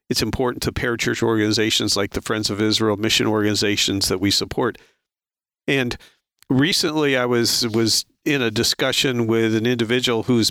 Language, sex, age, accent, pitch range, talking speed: English, male, 50-69, American, 115-135 Hz, 155 wpm